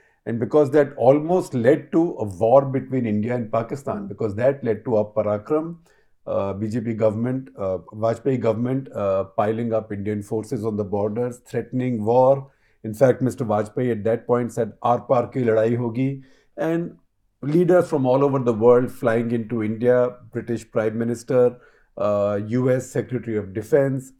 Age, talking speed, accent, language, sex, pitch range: 50-69, 160 wpm, Indian, English, male, 110-135 Hz